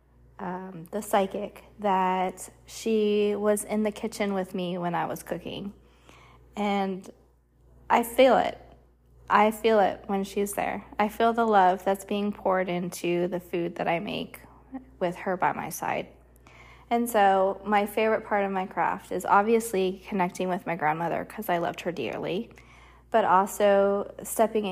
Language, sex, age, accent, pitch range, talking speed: English, female, 20-39, American, 175-205 Hz, 160 wpm